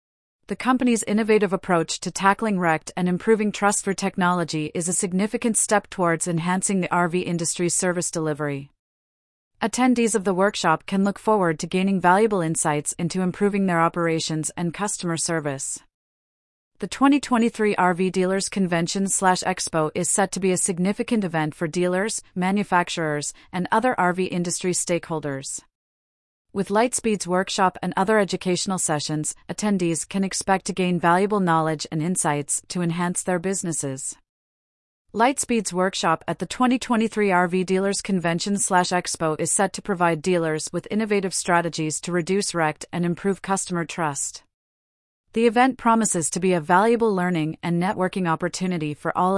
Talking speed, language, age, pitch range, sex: 145 wpm, English, 30-49, 165-200 Hz, female